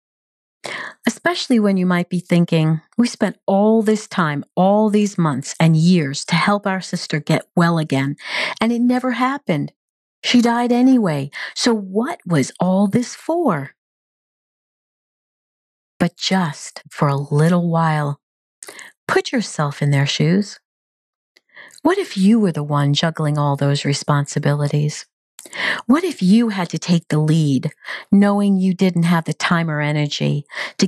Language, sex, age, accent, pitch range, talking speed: English, female, 40-59, American, 150-215 Hz, 145 wpm